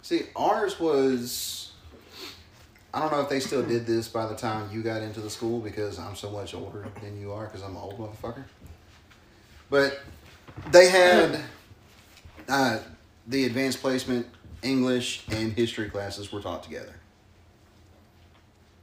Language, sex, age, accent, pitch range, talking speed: English, male, 30-49, American, 100-120 Hz, 145 wpm